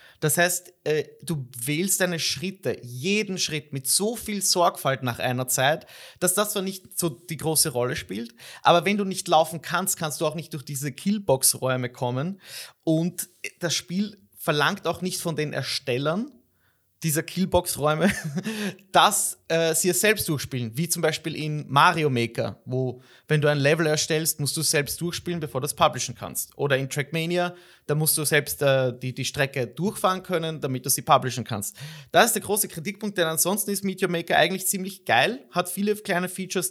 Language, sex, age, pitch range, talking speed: German, male, 30-49, 145-175 Hz, 185 wpm